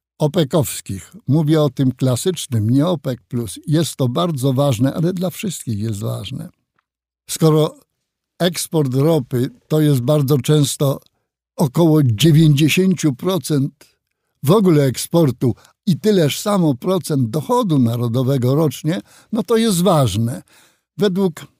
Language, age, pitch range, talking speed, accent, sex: Polish, 60-79, 140-185 Hz, 110 wpm, native, male